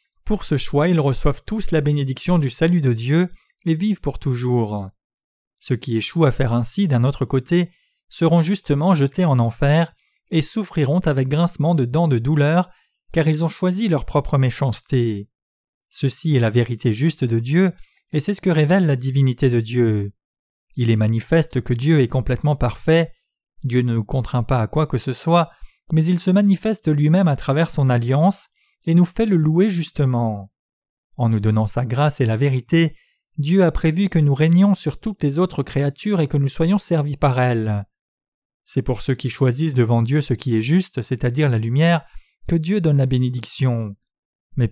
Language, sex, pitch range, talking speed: French, male, 125-170 Hz, 190 wpm